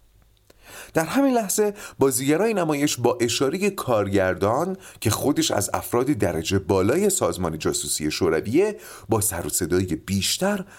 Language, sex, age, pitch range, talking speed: Persian, male, 30-49, 95-160 Hz, 120 wpm